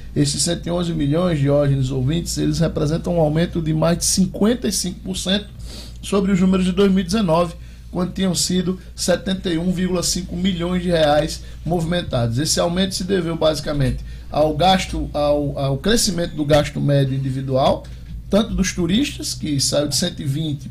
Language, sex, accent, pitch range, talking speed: Portuguese, male, Brazilian, 145-185 Hz, 140 wpm